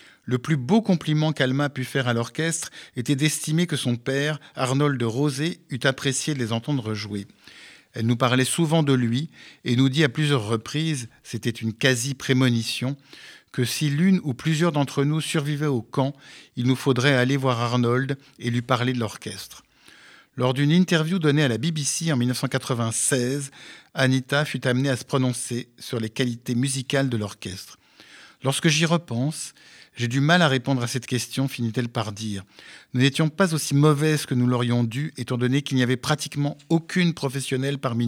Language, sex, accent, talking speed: French, male, French, 175 wpm